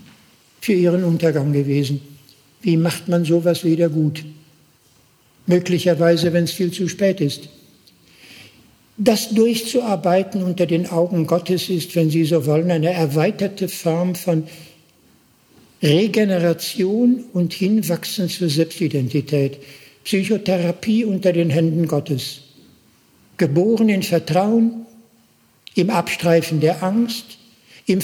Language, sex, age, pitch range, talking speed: German, male, 60-79, 165-205 Hz, 105 wpm